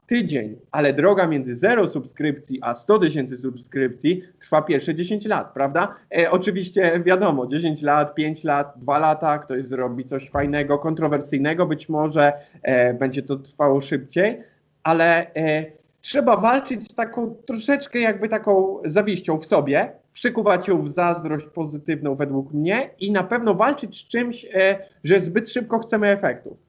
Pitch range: 150-210 Hz